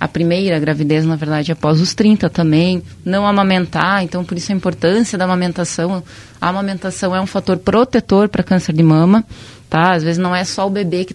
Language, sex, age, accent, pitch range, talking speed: Portuguese, female, 20-39, Brazilian, 170-225 Hz, 200 wpm